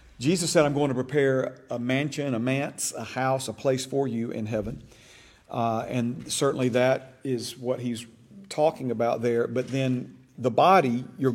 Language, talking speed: English, 175 wpm